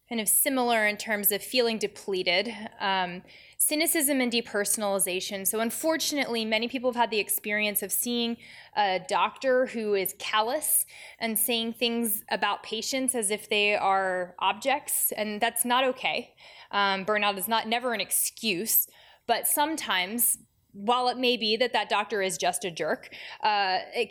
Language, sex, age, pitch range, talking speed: English, female, 20-39, 195-245 Hz, 155 wpm